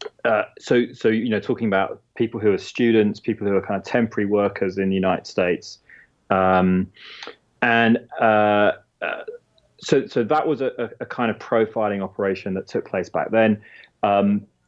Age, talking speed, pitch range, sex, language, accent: 20-39, 170 wpm, 95-115 Hz, male, English, British